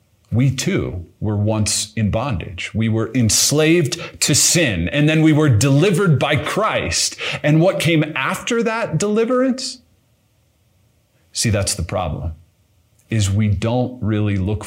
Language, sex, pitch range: English, male, 100-125 Hz